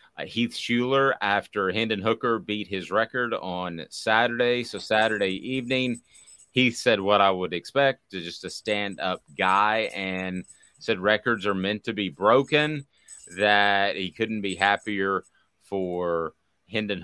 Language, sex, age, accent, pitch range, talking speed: English, male, 30-49, American, 85-105 Hz, 135 wpm